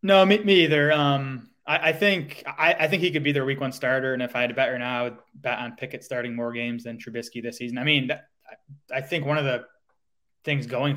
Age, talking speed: 20-39, 265 wpm